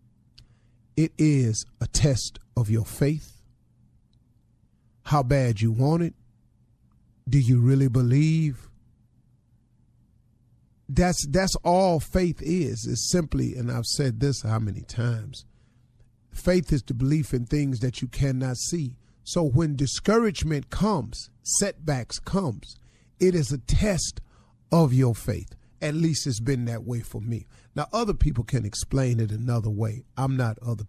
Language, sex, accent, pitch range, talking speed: English, male, American, 115-145 Hz, 140 wpm